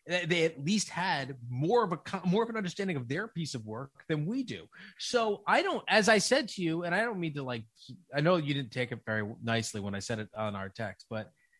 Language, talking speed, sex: English, 255 wpm, male